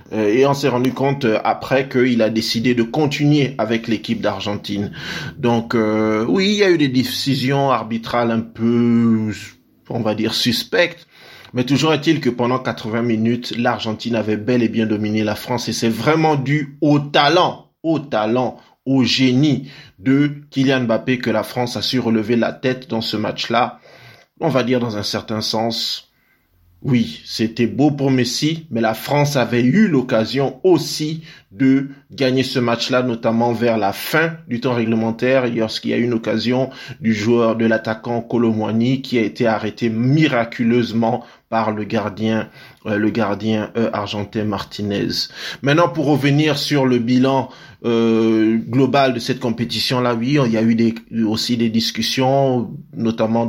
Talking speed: 165 wpm